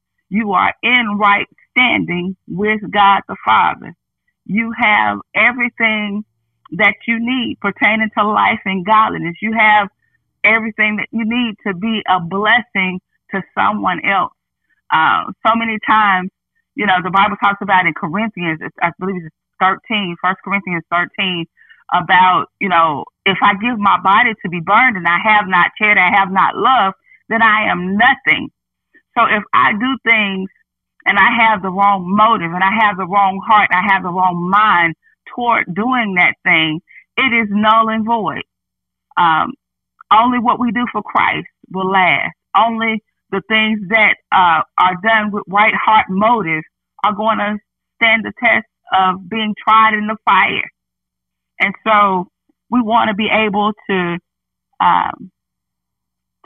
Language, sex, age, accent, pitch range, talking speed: English, female, 30-49, American, 185-225 Hz, 160 wpm